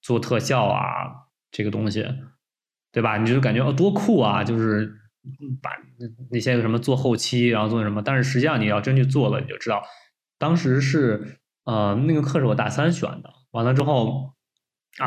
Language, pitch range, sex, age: Chinese, 115-140 Hz, male, 20-39